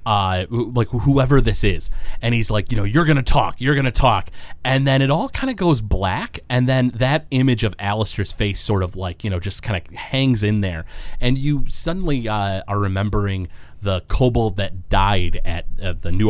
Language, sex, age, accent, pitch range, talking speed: English, male, 30-49, American, 90-120 Hz, 215 wpm